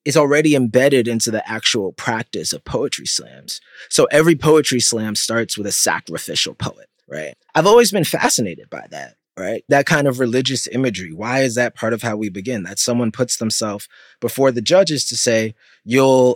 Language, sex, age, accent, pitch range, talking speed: English, male, 20-39, American, 110-140 Hz, 185 wpm